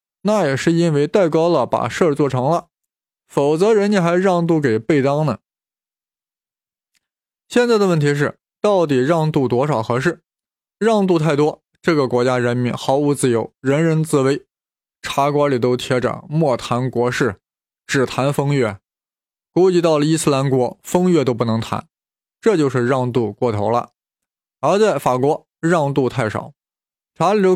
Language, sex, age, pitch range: Chinese, male, 20-39, 125-175 Hz